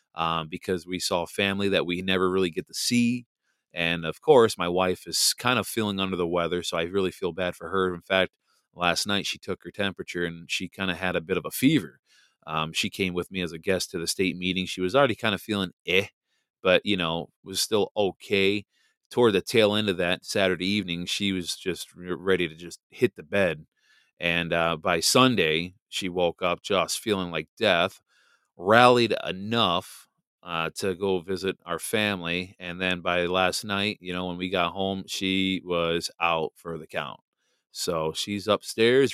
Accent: American